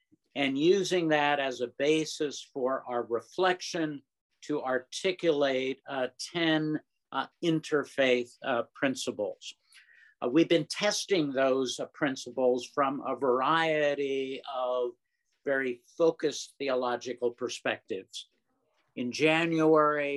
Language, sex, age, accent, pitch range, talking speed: English, male, 50-69, American, 125-155 Hz, 100 wpm